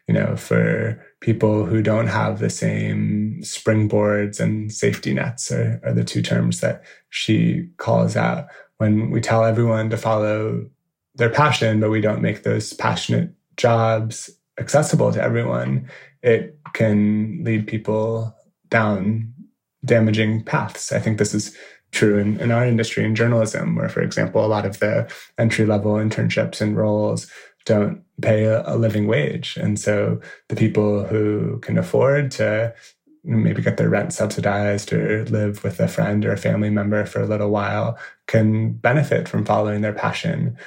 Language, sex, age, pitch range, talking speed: English, male, 20-39, 105-115 Hz, 155 wpm